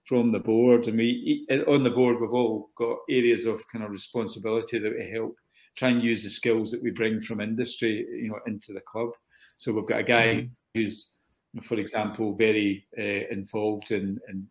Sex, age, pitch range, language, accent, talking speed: male, 40-59, 105-120 Hz, English, British, 195 wpm